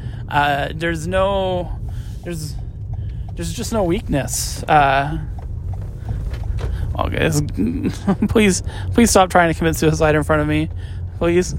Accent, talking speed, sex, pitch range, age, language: American, 115 wpm, male, 100-170 Hz, 20-39, English